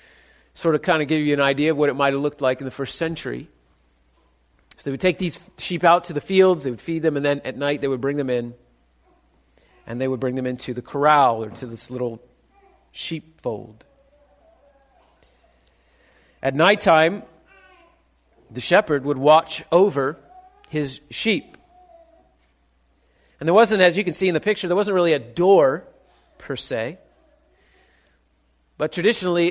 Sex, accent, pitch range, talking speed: male, American, 125-190 Hz, 170 wpm